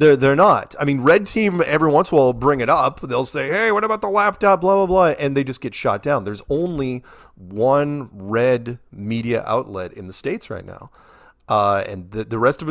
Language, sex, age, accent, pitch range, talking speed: English, male, 30-49, American, 100-145 Hz, 230 wpm